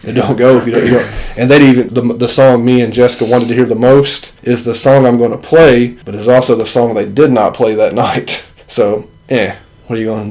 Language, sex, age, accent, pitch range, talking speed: English, male, 30-49, American, 115-130 Hz, 260 wpm